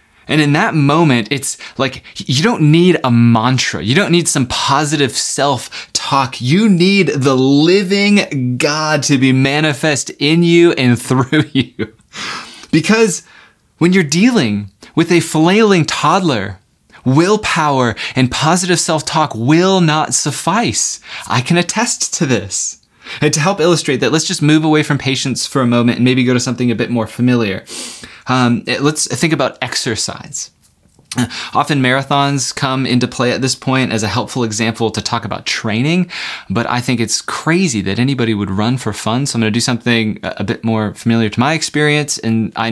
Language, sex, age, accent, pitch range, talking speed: English, male, 20-39, American, 115-155 Hz, 170 wpm